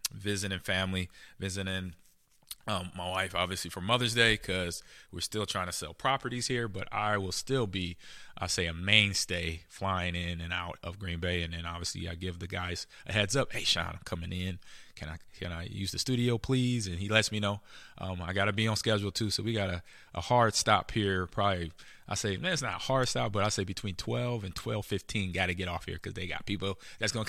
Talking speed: 230 wpm